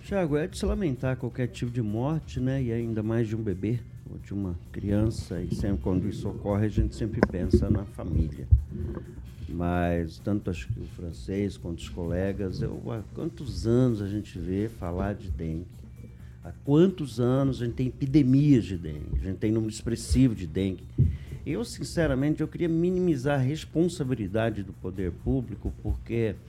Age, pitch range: 50-69, 95-130 Hz